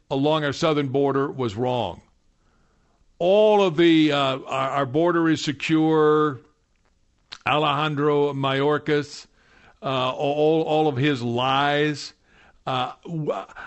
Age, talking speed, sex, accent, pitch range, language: 60-79, 105 wpm, male, American, 130-160 Hz, English